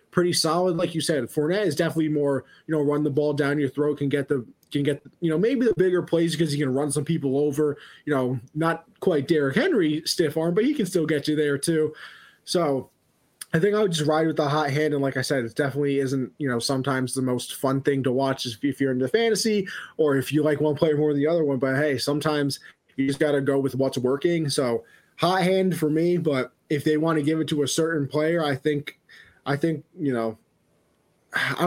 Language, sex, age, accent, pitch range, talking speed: English, male, 20-39, American, 140-165 Hz, 245 wpm